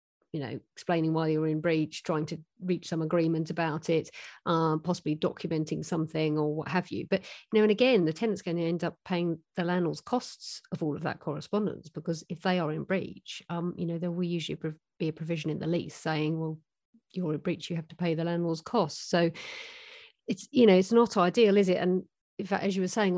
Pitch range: 165-195 Hz